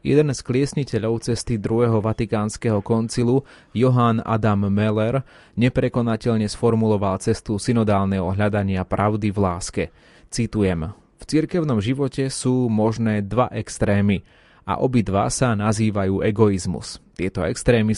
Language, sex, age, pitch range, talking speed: Slovak, male, 30-49, 105-125 Hz, 110 wpm